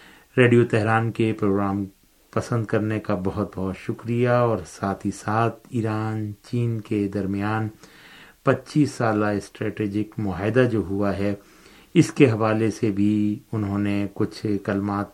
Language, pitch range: Urdu, 100-120 Hz